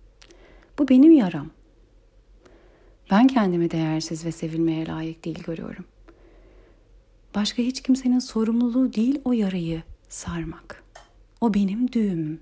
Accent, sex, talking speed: native, female, 105 wpm